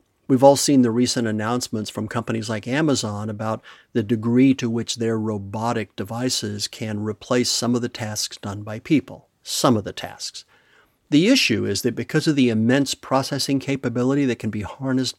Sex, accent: male, American